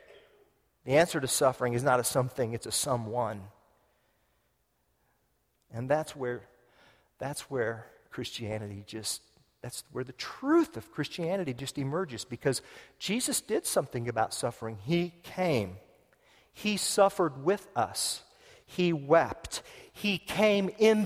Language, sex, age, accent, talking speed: English, male, 40-59, American, 120 wpm